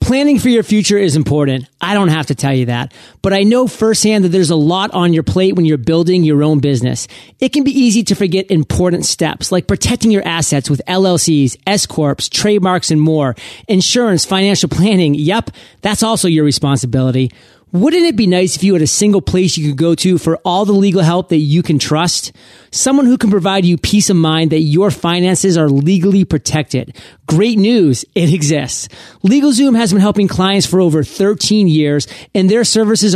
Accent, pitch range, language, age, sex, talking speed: American, 155-210 Hz, English, 30-49, male, 195 wpm